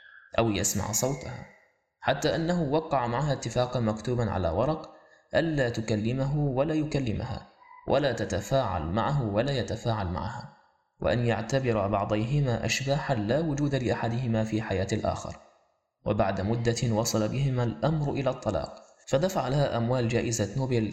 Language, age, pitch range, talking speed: Arabic, 20-39, 110-135 Hz, 125 wpm